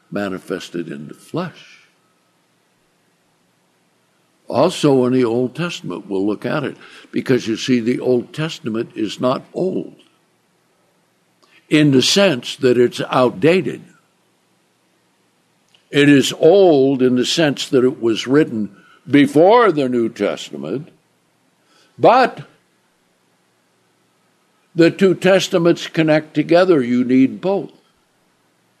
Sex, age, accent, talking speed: male, 60-79, American, 105 wpm